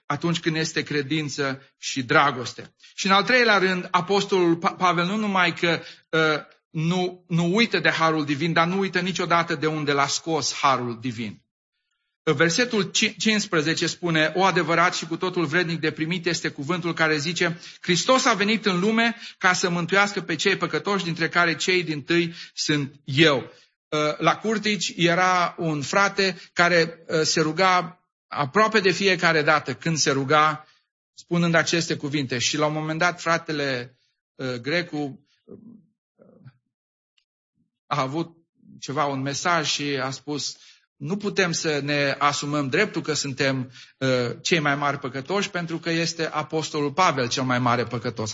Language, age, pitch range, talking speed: English, 40-59, 145-180 Hz, 150 wpm